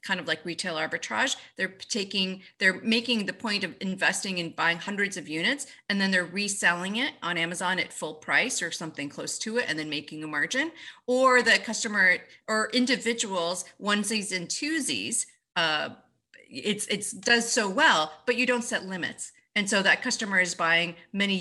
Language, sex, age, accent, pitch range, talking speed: English, female, 40-59, American, 175-225 Hz, 180 wpm